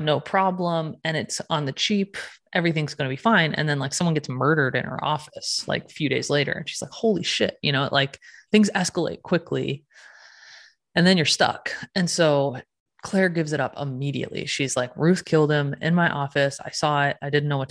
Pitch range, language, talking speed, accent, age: 140-170 Hz, English, 210 wpm, American, 20-39